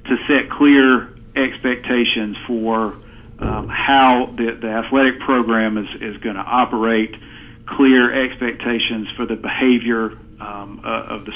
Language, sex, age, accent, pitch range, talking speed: English, male, 50-69, American, 115-125 Hz, 130 wpm